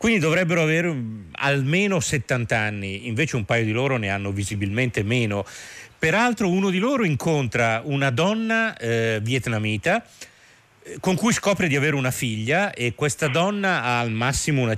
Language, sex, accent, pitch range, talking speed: Italian, male, native, 115-170 Hz, 155 wpm